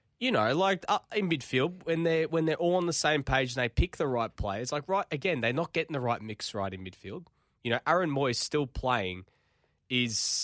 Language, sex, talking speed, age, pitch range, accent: English, male, 220 wpm, 20-39, 105-140 Hz, Australian